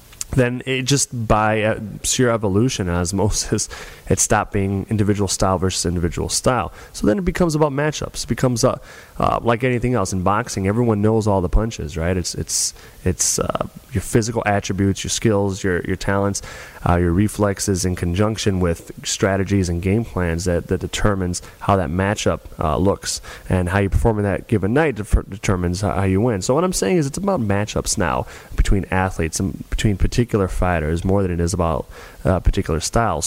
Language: English